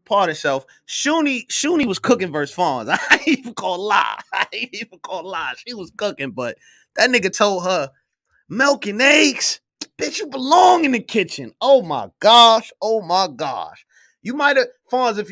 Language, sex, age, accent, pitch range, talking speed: English, male, 30-49, American, 160-225 Hz, 180 wpm